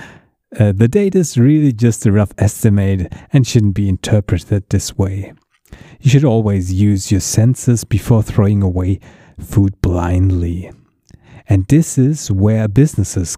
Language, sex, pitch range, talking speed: English, male, 100-125 Hz, 140 wpm